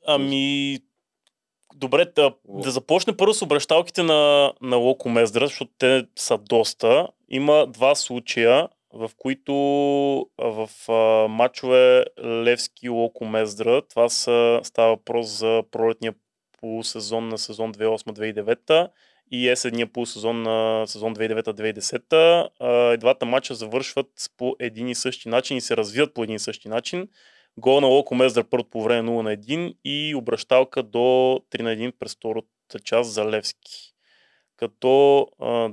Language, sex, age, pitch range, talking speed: Bulgarian, male, 20-39, 115-135 Hz, 140 wpm